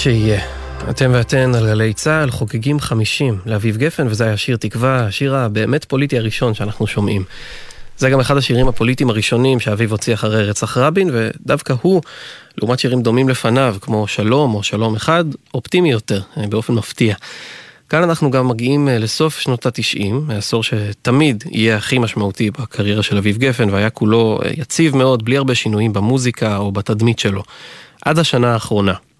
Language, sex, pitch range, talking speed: Hebrew, male, 105-130 Hz, 160 wpm